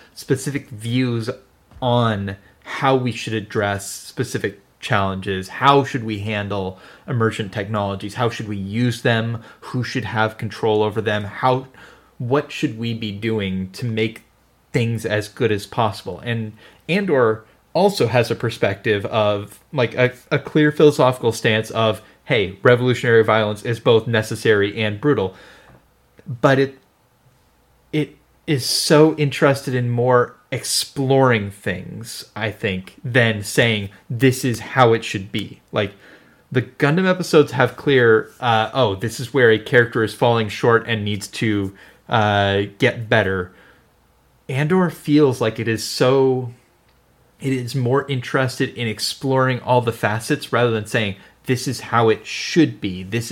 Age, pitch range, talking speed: 30-49, 105-130 Hz, 145 wpm